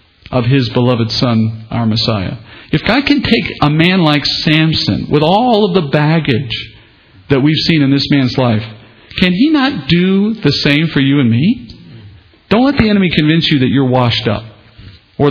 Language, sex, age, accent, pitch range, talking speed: English, male, 50-69, American, 115-155 Hz, 185 wpm